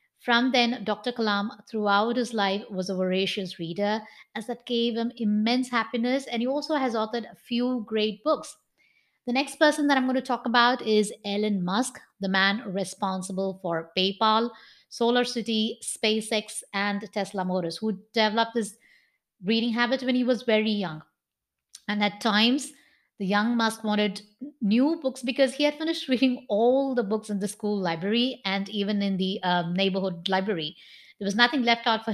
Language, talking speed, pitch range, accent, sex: English, 170 wpm, 195-245 Hz, Indian, female